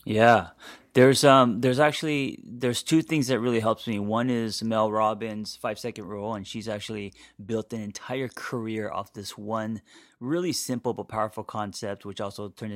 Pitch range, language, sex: 105-125 Hz, English, male